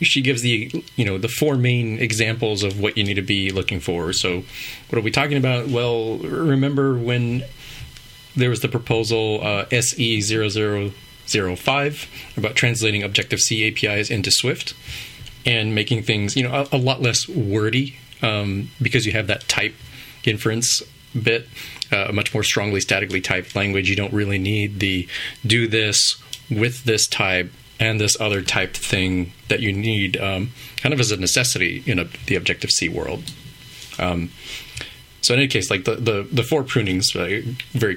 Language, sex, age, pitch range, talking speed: English, male, 30-49, 100-125 Hz, 165 wpm